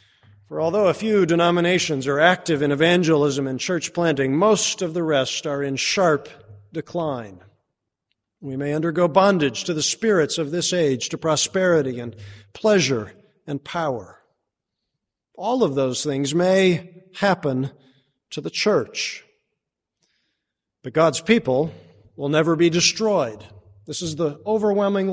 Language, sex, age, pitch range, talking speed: English, male, 50-69, 145-185 Hz, 135 wpm